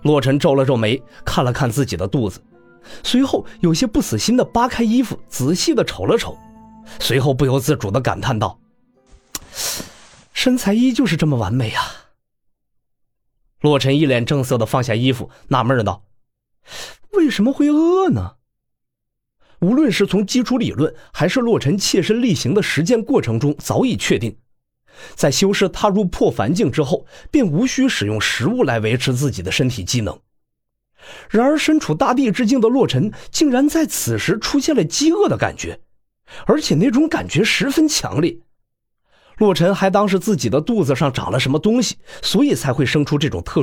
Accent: native